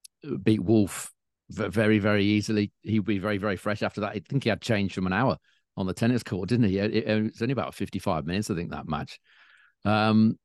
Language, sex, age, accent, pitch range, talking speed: English, male, 40-59, British, 95-115 Hz, 215 wpm